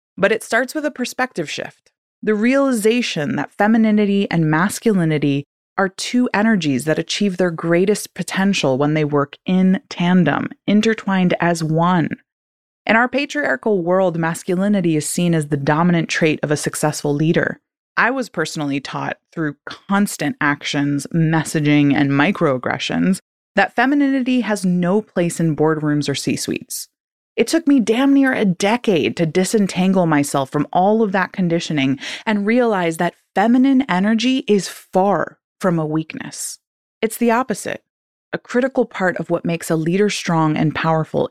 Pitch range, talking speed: 155-210 Hz, 150 wpm